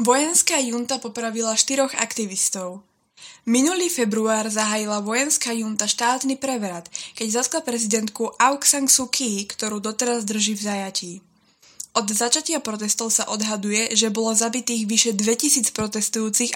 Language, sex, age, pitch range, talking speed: Slovak, female, 20-39, 205-235 Hz, 125 wpm